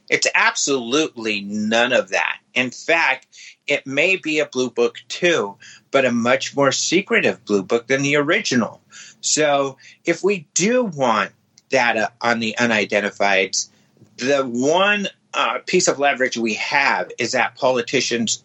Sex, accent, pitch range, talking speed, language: male, American, 115-145 Hz, 145 wpm, English